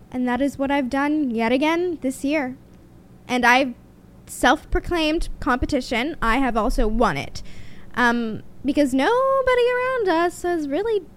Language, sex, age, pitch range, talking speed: English, female, 10-29, 225-295 Hz, 140 wpm